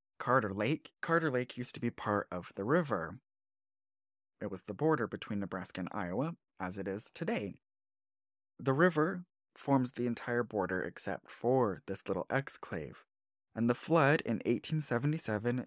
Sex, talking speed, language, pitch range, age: male, 150 wpm, English, 100-125 Hz, 20-39